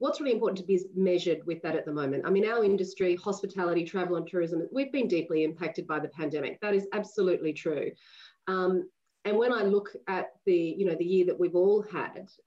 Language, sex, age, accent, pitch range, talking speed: English, female, 30-49, Australian, 170-205 Hz, 215 wpm